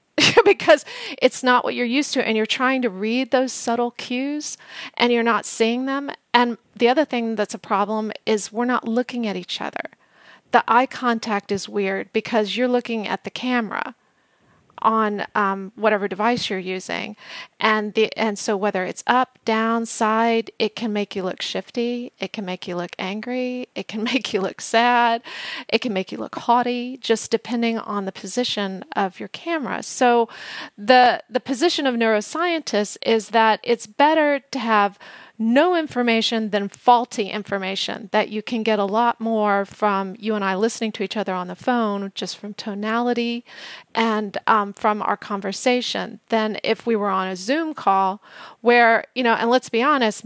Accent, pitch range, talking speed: American, 210-245 Hz, 180 wpm